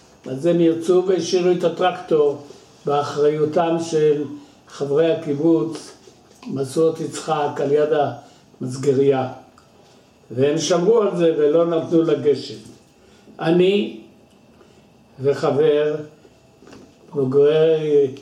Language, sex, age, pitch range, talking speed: Hebrew, male, 60-79, 140-170 Hz, 85 wpm